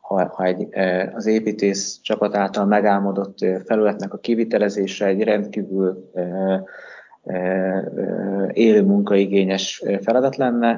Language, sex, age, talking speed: Hungarian, male, 20-39, 90 wpm